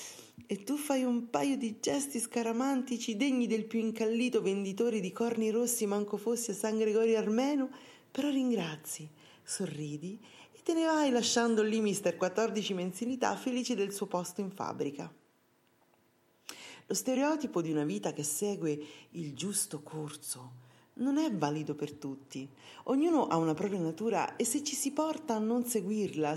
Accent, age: native, 40-59